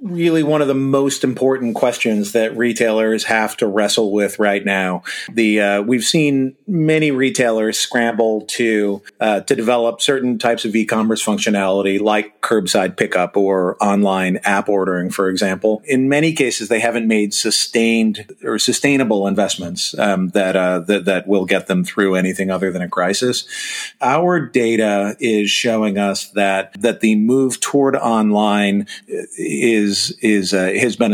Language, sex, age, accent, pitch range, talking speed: English, male, 40-59, American, 100-125 Hz, 155 wpm